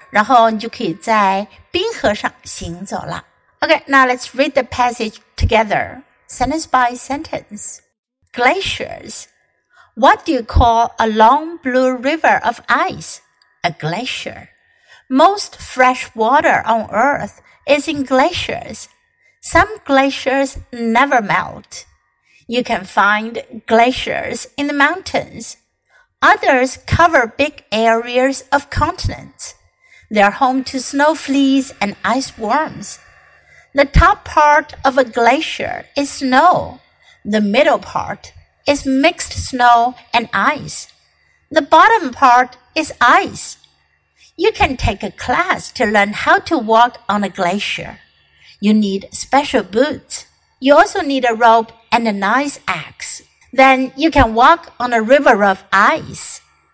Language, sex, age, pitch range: Chinese, female, 60-79, 230-290 Hz